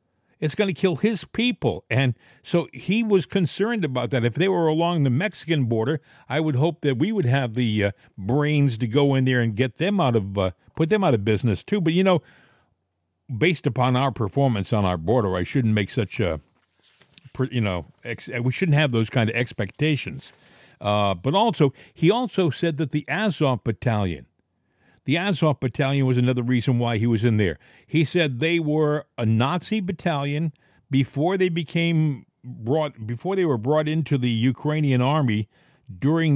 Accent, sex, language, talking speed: American, male, English, 185 wpm